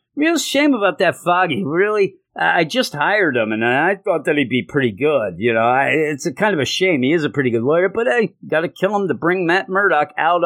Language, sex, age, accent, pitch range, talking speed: English, male, 50-69, American, 125-200 Hz, 245 wpm